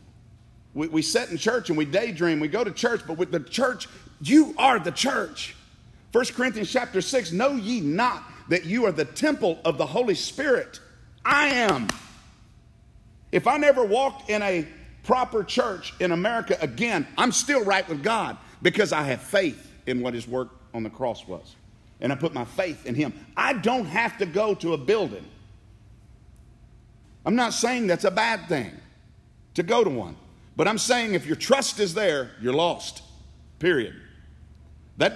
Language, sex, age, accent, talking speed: English, male, 50-69, American, 180 wpm